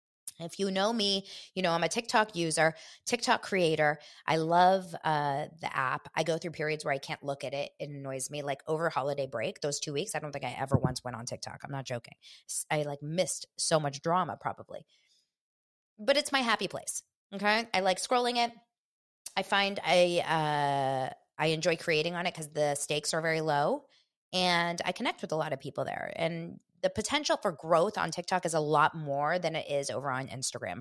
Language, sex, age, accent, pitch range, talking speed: English, female, 20-39, American, 145-205 Hz, 210 wpm